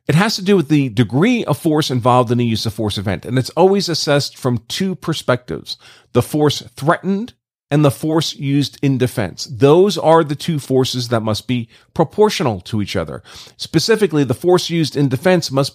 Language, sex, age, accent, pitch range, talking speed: English, male, 40-59, American, 115-155 Hz, 195 wpm